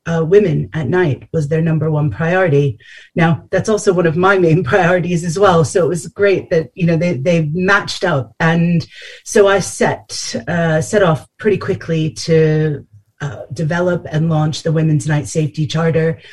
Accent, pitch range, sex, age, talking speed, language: American, 150-185 Hz, female, 30-49, 180 wpm, English